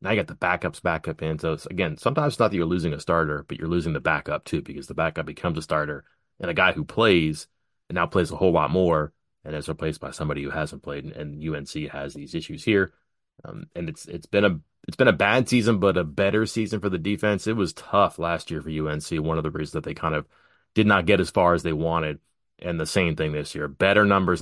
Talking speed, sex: 255 wpm, male